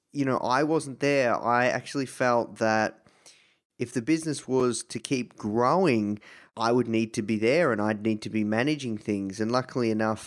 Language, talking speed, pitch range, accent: English, 185 wpm, 110-125 Hz, Australian